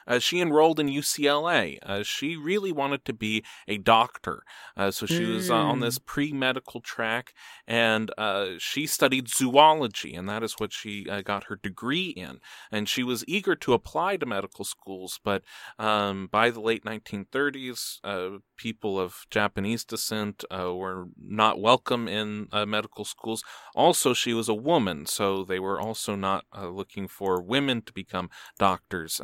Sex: male